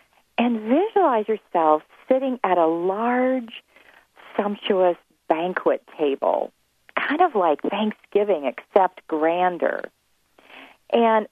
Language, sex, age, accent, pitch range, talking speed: English, female, 50-69, American, 195-285 Hz, 90 wpm